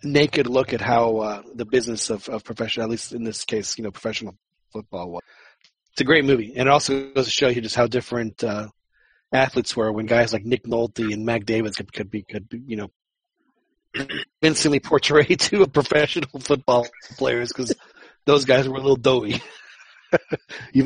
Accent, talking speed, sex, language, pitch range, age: American, 190 wpm, male, English, 110-130 Hz, 30-49